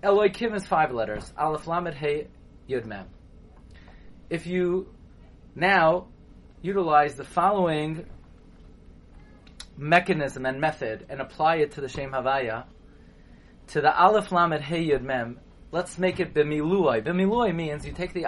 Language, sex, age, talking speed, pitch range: English, male, 30-49, 135 wpm, 125-165 Hz